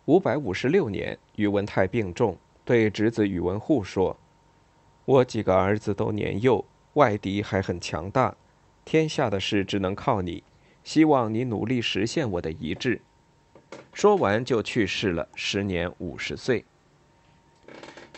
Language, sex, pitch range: Chinese, male, 95-130 Hz